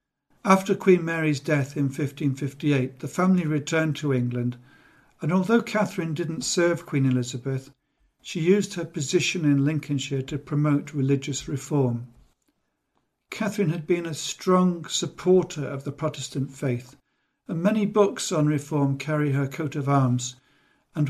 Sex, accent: male, British